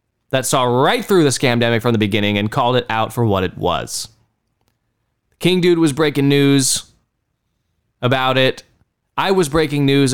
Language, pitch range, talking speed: English, 115-150 Hz, 170 wpm